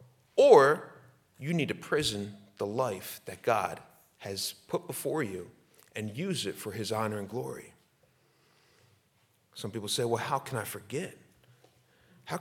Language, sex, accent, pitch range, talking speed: English, male, American, 115-150 Hz, 145 wpm